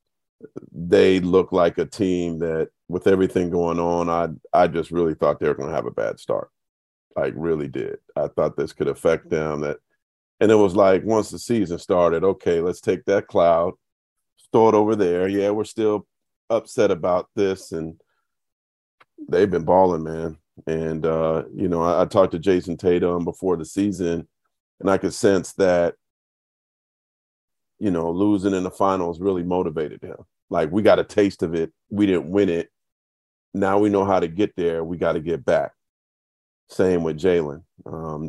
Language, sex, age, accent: English, male, 40-59, American